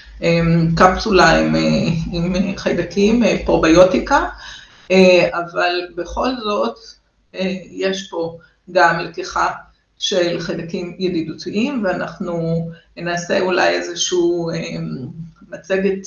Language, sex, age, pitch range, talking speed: Hebrew, female, 50-69, 175-210 Hz, 80 wpm